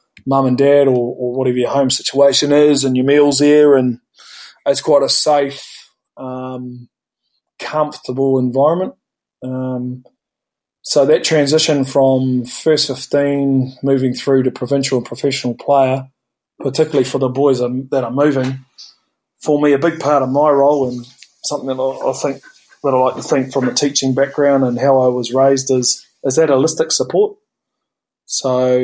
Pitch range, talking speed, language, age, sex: 130-145 Hz, 160 wpm, English, 20-39, male